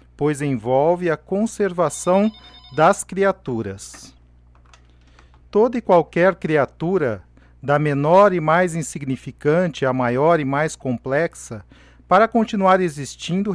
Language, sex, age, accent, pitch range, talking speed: Portuguese, male, 40-59, Brazilian, 125-185 Hz, 100 wpm